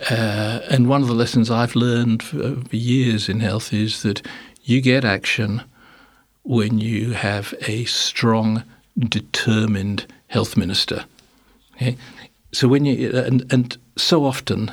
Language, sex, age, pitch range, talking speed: English, male, 60-79, 110-130 Hz, 135 wpm